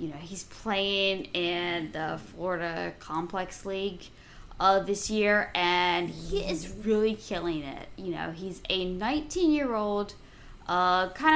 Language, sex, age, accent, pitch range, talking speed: English, female, 20-39, American, 170-220 Hz, 125 wpm